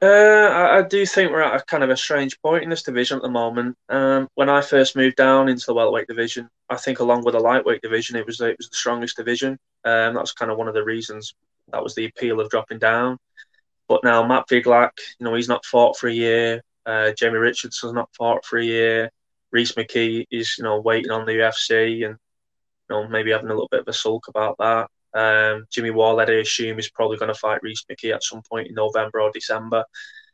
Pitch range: 110-125 Hz